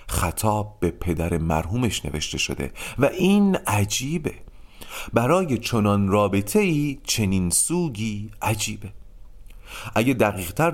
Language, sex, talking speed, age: Persian, male, 100 wpm, 40-59